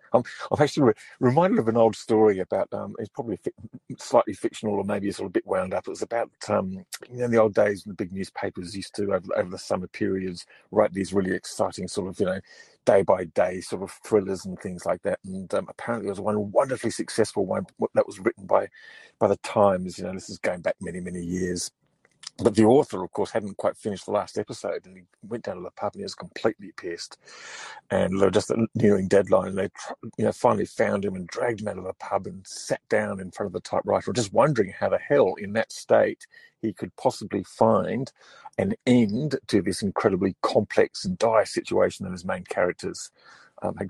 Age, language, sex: 40-59, English, male